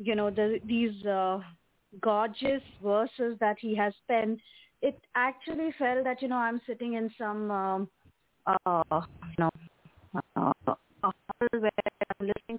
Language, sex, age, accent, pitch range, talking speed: English, female, 20-39, Indian, 195-240 Hz, 130 wpm